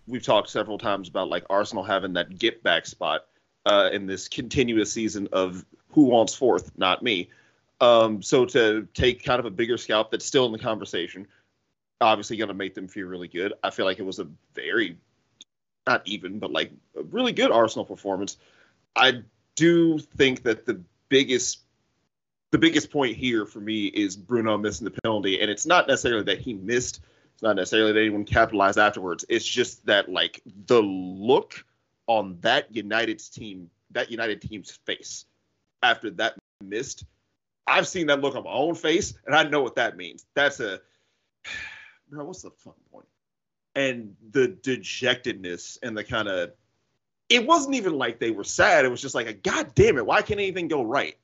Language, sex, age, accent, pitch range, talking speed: English, male, 30-49, American, 100-145 Hz, 180 wpm